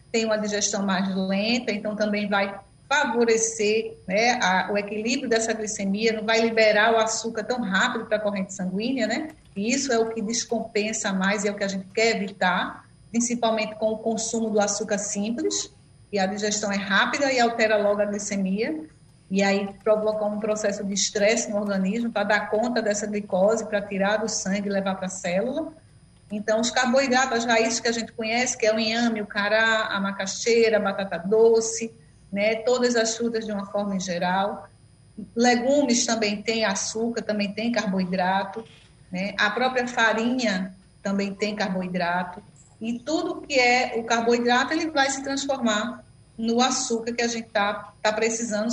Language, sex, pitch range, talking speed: Portuguese, female, 200-235 Hz, 175 wpm